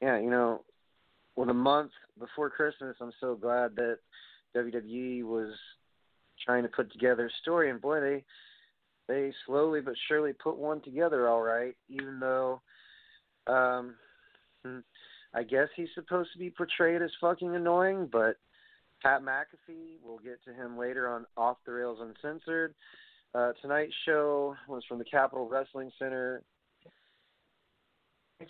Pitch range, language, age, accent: 120-150 Hz, English, 30-49, American